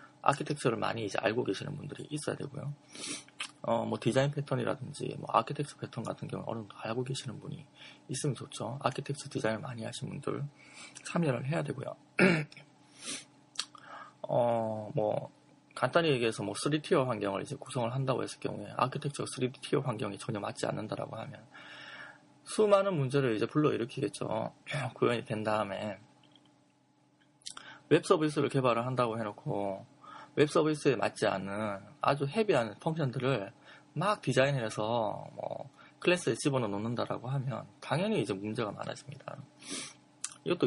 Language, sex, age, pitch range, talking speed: English, male, 20-39, 120-145 Hz, 120 wpm